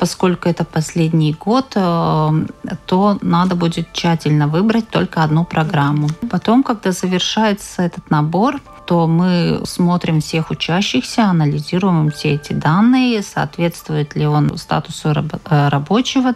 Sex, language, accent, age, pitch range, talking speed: female, Russian, native, 40-59, 160-210 Hz, 115 wpm